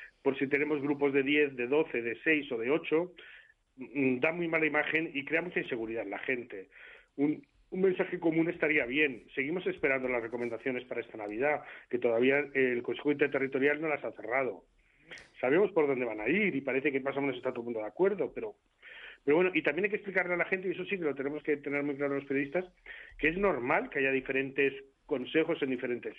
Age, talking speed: 40-59, 220 wpm